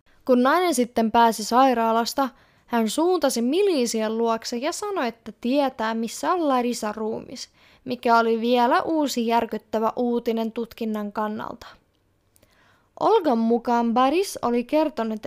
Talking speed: 120 wpm